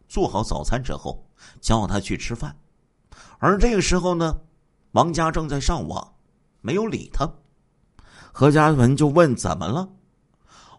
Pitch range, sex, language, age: 140-230 Hz, male, Chinese, 50-69